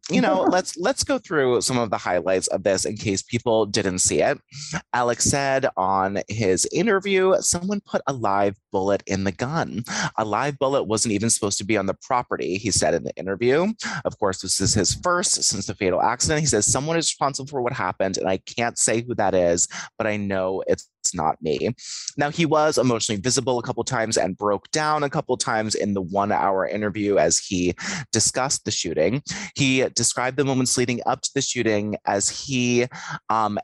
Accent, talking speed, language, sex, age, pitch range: American, 205 wpm, English, male, 30-49, 100-135 Hz